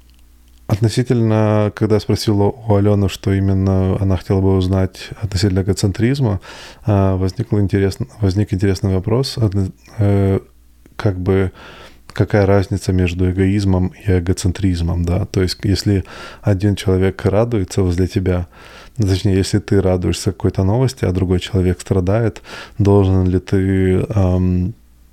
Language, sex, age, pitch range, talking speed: Russian, male, 20-39, 90-100 Hz, 115 wpm